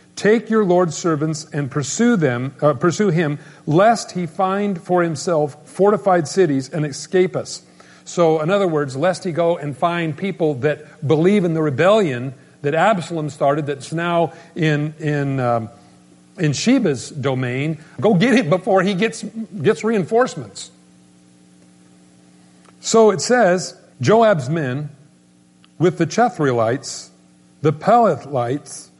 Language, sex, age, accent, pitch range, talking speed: English, male, 50-69, American, 135-185 Hz, 130 wpm